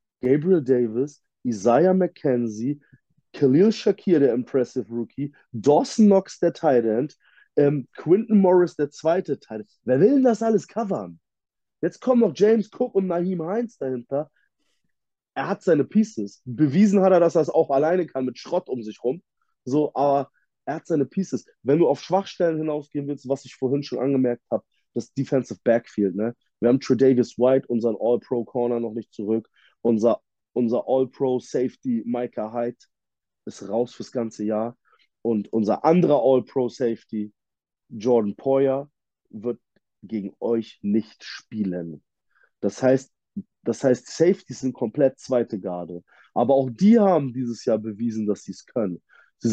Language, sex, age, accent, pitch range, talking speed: German, male, 30-49, German, 120-155 Hz, 155 wpm